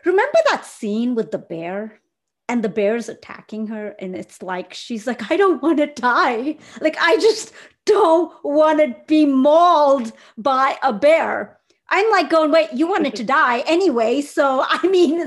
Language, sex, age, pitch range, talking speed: English, female, 30-49, 245-335 Hz, 175 wpm